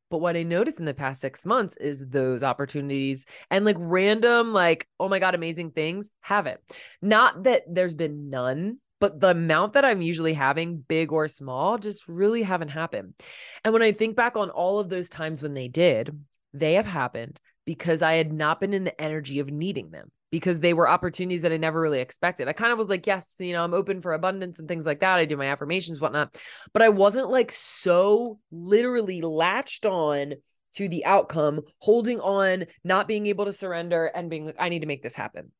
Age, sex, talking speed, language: 20-39, female, 210 wpm, English